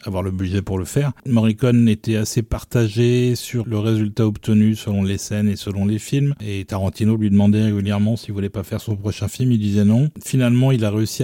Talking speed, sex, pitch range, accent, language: 220 wpm, male, 100-120 Hz, French, French